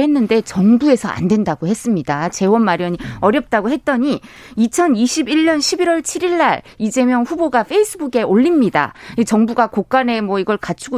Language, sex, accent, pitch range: Korean, female, native, 210-305 Hz